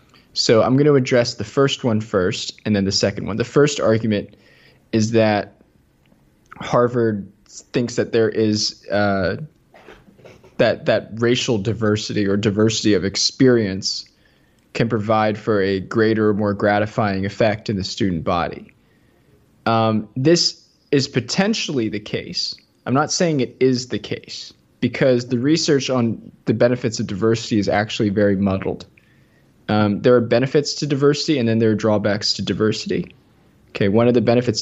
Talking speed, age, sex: 155 wpm, 20-39, male